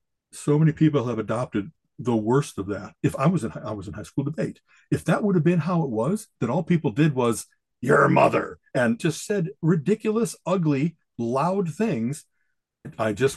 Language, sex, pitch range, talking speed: English, male, 120-175 Hz, 195 wpm